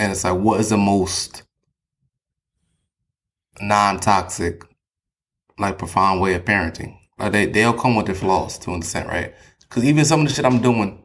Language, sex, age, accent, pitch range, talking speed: English, male, 20-39, American, 90-110 Hz, 180 wpm